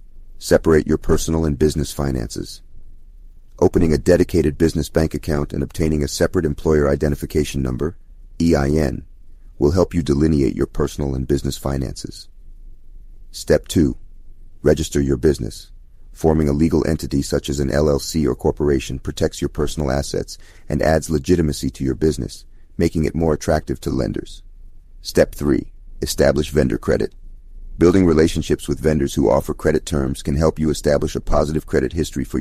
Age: 40-59